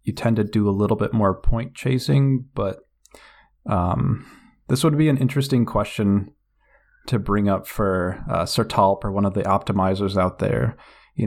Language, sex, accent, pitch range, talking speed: English, male, American, 95-115 Hz, 170 wpm